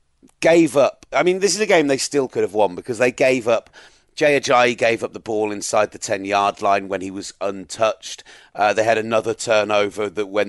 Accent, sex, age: British, male, 30-49